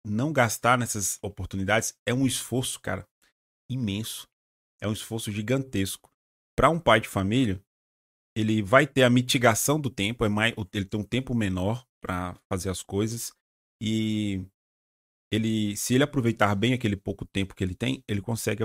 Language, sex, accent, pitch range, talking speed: Portuguese, male, Brazilian, 100-125 Hz, 150 wpm